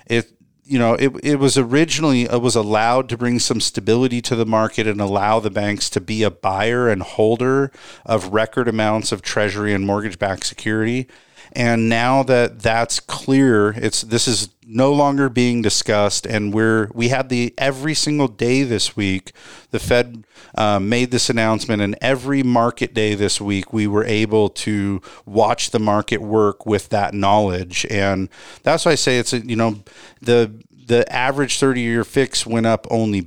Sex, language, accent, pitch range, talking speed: male, English, American, 105-120 Hz, 175 wpm